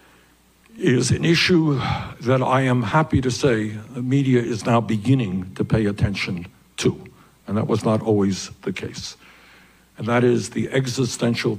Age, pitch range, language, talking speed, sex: 60-79, 110-135 Hz, English, 155 wpm, male